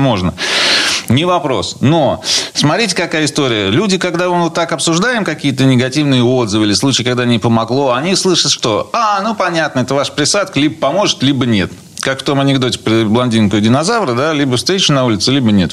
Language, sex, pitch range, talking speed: Russian, male, 115-155 Hz, 185 wpm